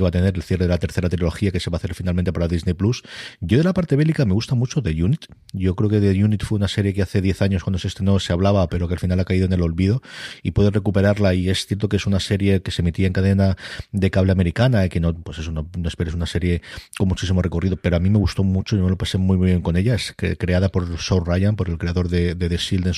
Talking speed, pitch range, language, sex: 300 wpm, 90-105 Hz, Spanish, male